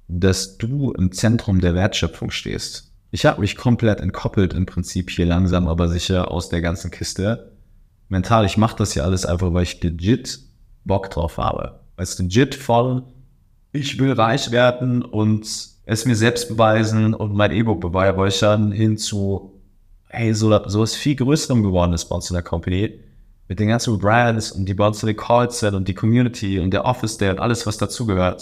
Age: 30-49